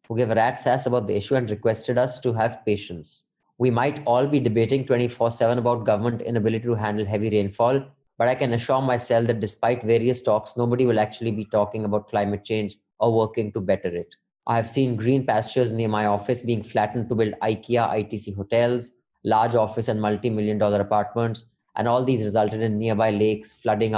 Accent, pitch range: Indian, 105-125 Hz